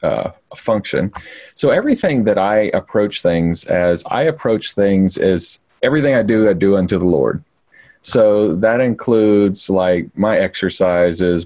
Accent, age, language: American, 40-59, English